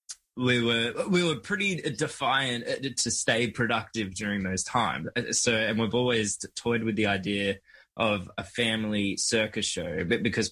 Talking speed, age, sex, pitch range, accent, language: 155 wpm, 20-39, male, 105-125 Hz, Australian, English